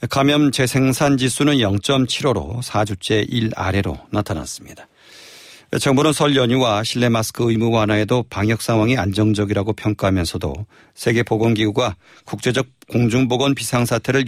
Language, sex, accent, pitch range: Korean, male, native, 105-125 Hz